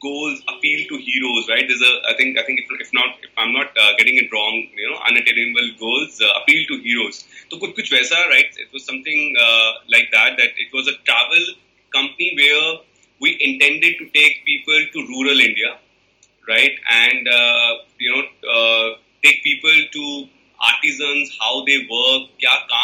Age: 30-49